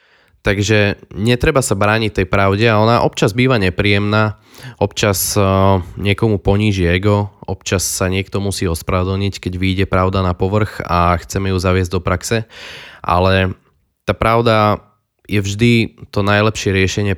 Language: Slovak